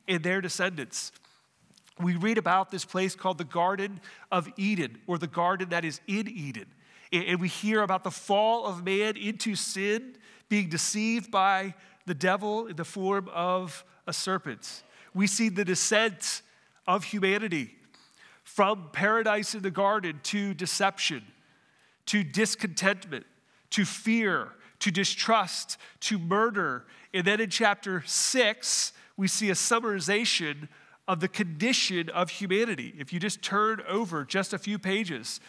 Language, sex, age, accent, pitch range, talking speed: English, male, 40-59, American, 180-215 Hz, 145 wpm